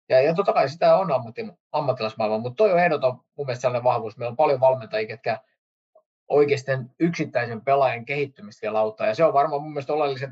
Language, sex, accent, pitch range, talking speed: Finnish, male, native, 110-140 Hz, 185 wpm